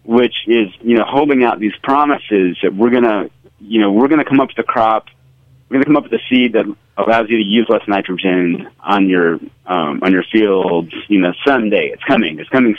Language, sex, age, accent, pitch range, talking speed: English, male, 40-59, American, 100-130 Hz, 235 wpm